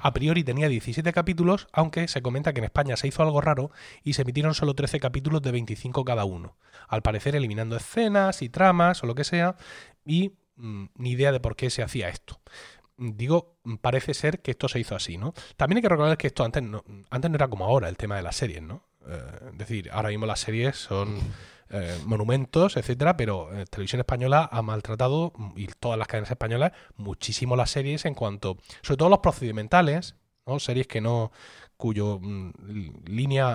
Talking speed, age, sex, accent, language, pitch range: 195 wpm, 30-49, male, Spanish, Spanish, 110-150 Hz